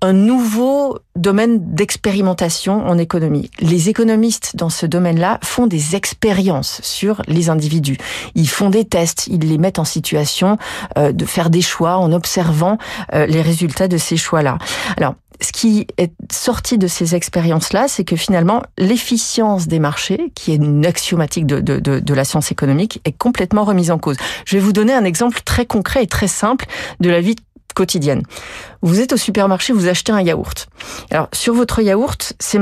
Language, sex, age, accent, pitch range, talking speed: French, female, 40-59, French, 165-210 Hz, 175 wpm